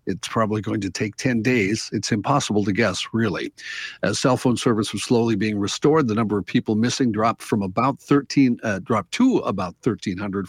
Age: 50-69